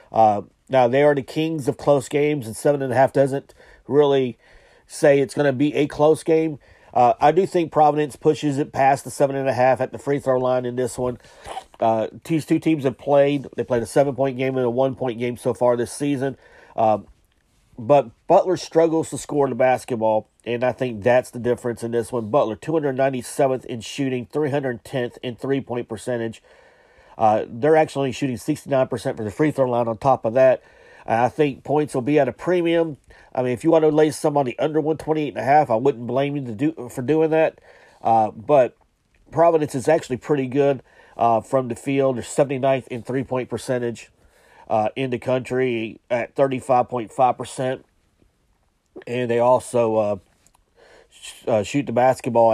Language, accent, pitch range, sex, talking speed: English, American, 120-145 Hz, male, 180 wpm